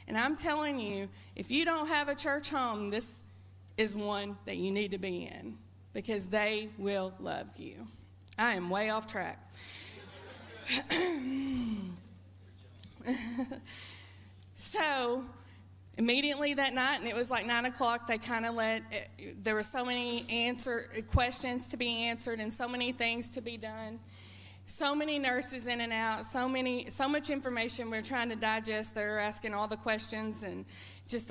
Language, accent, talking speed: English, American, 155 wpm